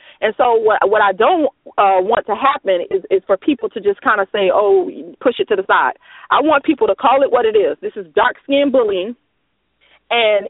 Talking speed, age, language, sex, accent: 230 wpm, 30-49, English, female, American